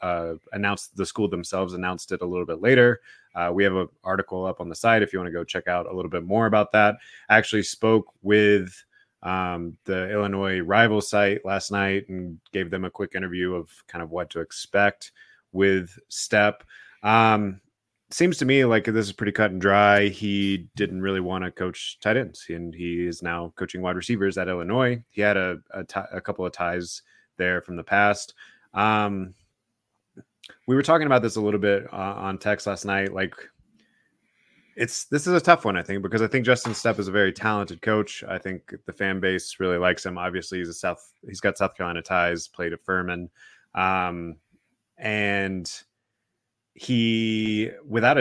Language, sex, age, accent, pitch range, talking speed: English, male, 20-39, American, 90-105 Hz, 195 wpm